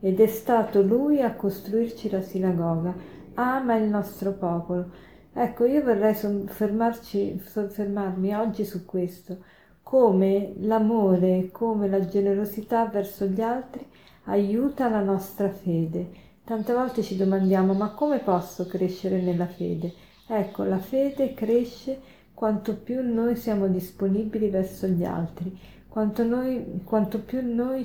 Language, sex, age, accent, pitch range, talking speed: Italian, female, 40-59, native, 190-230 Hz, 125 wpm